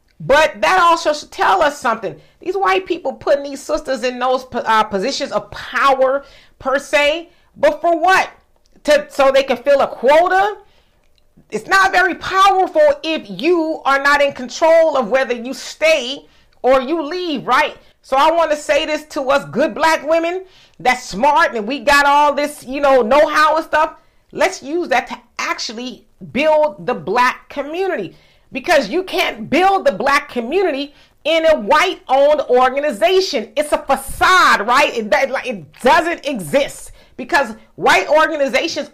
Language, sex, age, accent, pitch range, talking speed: English, female, 40-59, American, 260-320 Hz, 160 wpm